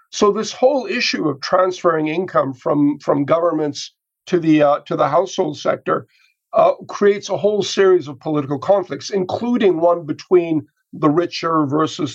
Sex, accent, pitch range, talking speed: male, American, 155-200 Hz, 155 wpm